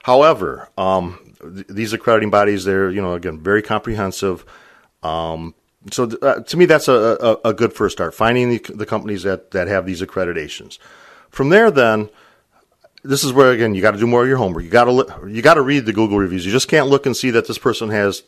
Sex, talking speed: male, 225 wpm